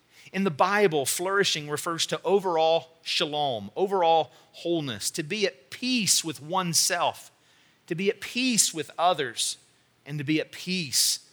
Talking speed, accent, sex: 145 wpm, American, male